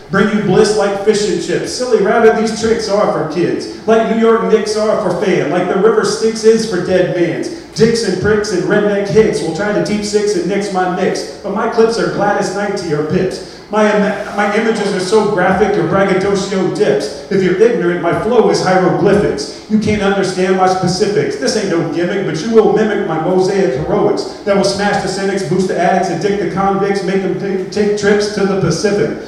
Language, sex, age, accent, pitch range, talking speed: English, male, 40-59, American, 185-210 Hz, 215 wpm